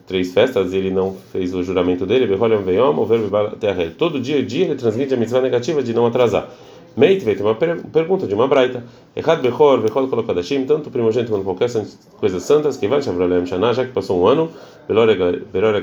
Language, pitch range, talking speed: Portuguese, 95-135 Hz, 210 wpm